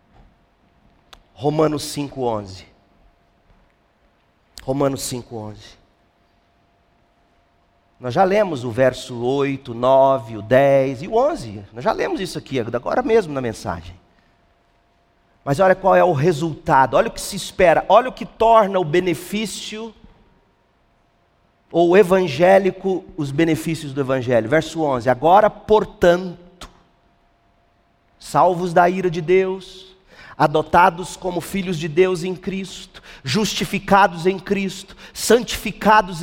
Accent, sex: Brazilian, male